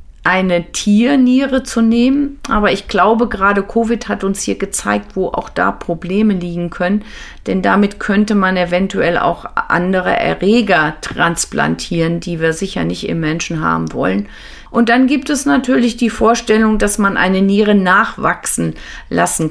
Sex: female